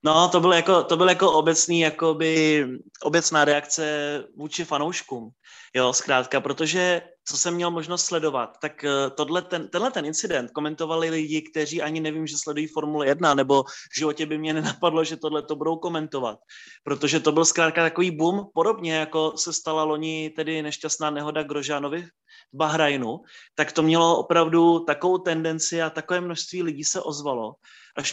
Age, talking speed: 20-39, 160 wpm